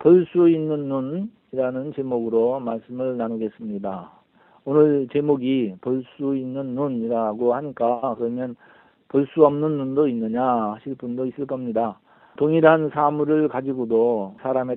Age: 40-59